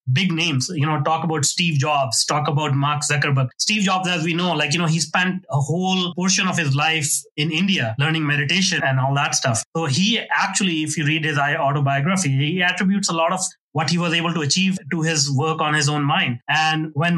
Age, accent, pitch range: 30-49, Indian, 140-165 Hz